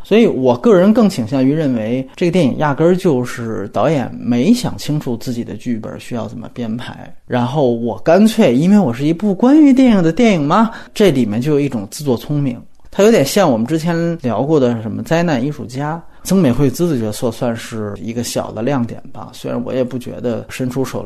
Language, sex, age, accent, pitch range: Chinese, male, 30-49, native, 120-155 Hz